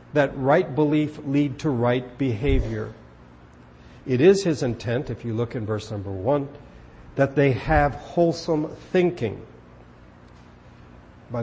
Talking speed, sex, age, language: 125 wpm, male, 60-79, English